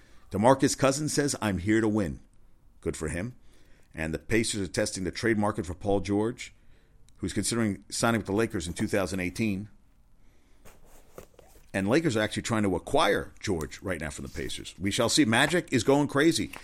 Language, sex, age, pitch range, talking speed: English, male, 50-69, 90-125 Hz, 175 wpm